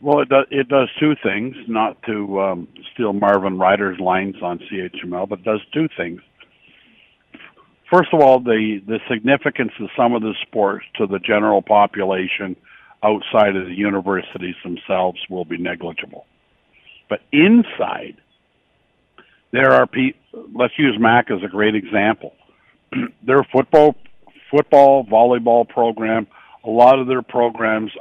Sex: male